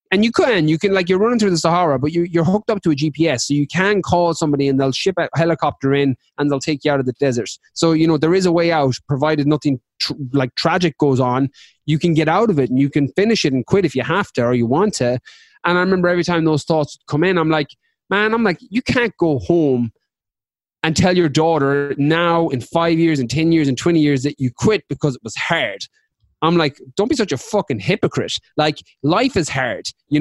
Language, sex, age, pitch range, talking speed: English, male, 20-39, 140-185 Hz, 245 wpm